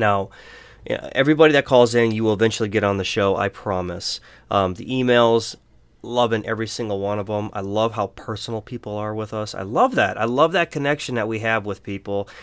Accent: American